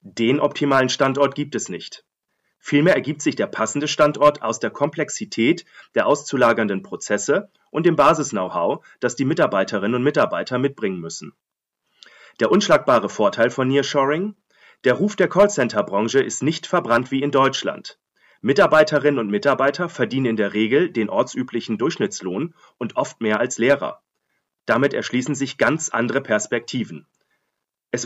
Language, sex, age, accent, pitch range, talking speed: German, male, 40-59, German, 125-155 Hz, 140 wpm